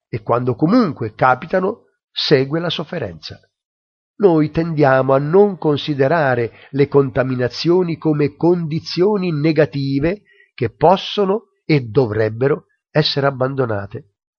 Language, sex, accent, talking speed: Italian, male, native, 95 wpm